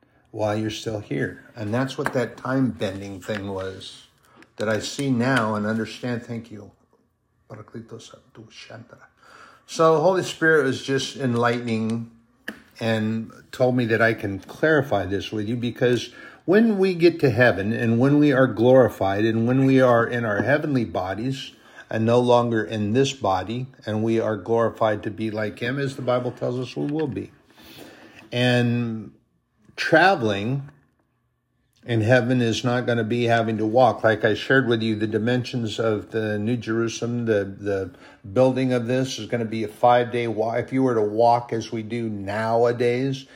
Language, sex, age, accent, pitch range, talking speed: English, male, 50-69, American, 110-130 Hz, 165 wpm